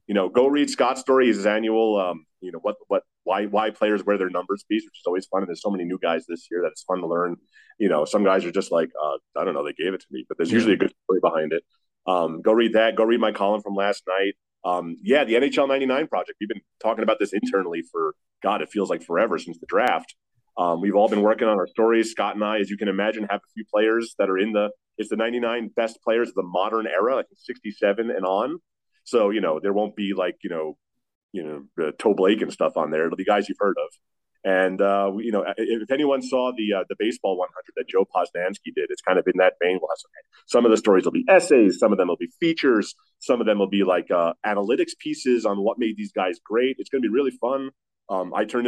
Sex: male